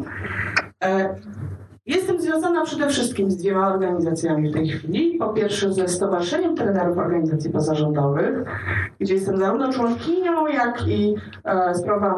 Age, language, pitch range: 30-49, Polish, 170-215 Hz